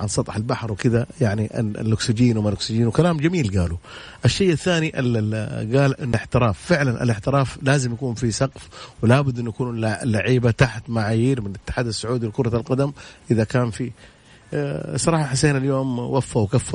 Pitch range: 105-125 Hz